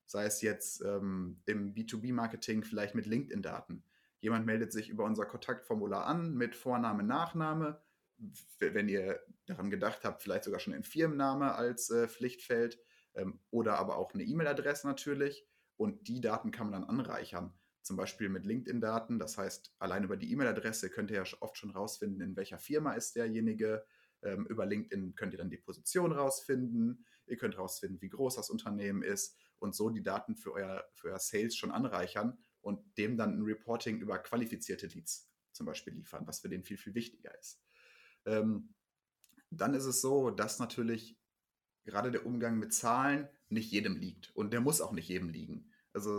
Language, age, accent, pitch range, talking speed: German, 30-49, German, 110-145 Hz, 175 wpm